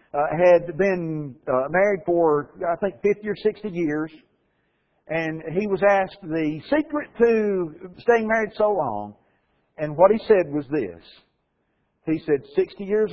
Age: 50-69